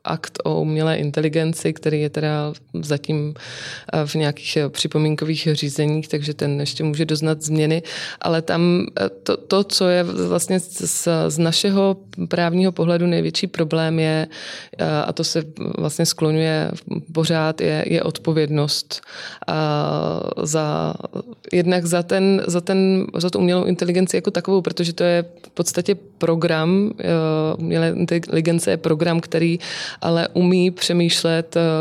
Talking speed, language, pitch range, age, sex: 130 wpm, Czech, 155-175 Hz, 20-39, female